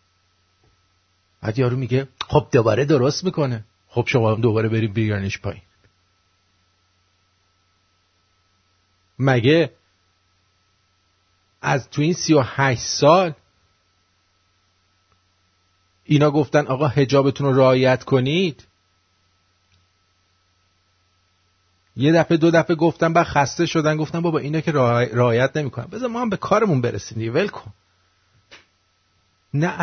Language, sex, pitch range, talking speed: English, male, 95-145 Hz, 100 wpm